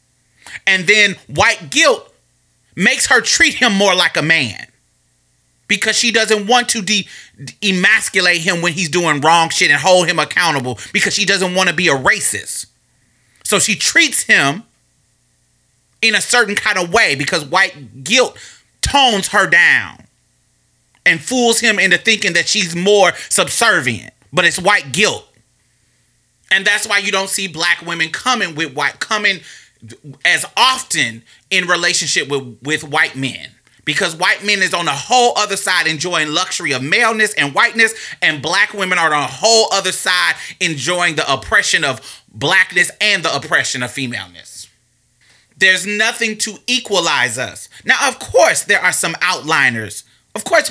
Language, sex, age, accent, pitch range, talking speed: English, male, 30-49, American, 145-210 Hz, 160 wpm